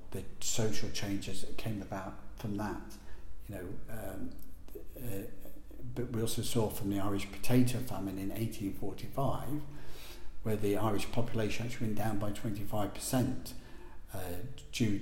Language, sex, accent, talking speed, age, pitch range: English, male, British, 140 wpm, 50-69, 100-120 Hz